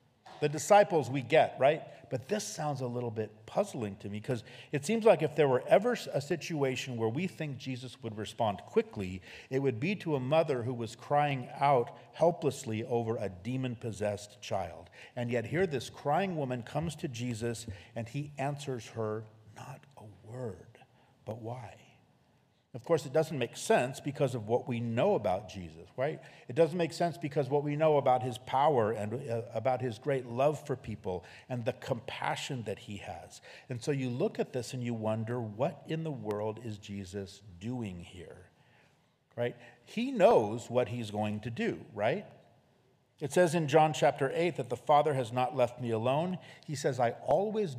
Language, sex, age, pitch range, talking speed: English, male, 50-69, 115-150 Hz, 185 wpm